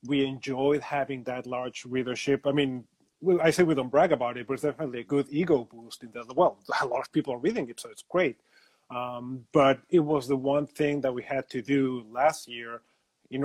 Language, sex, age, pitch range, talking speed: English, male, 30-49, 125-145 Hz, 225 wpm